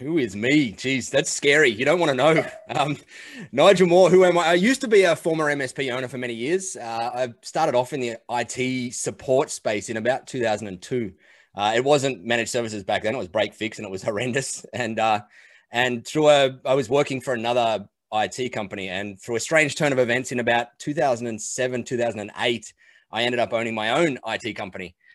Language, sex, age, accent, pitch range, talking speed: English, male, 20-39, Australian, 115-150 Hz, 205 wpm